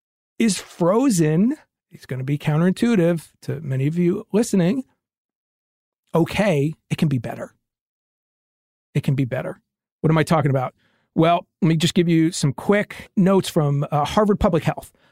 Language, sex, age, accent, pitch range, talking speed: English, male, 40-59, American, 155-205 Hz, 160 wpm